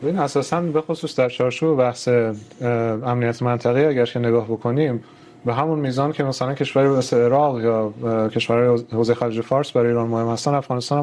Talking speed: 160 wpm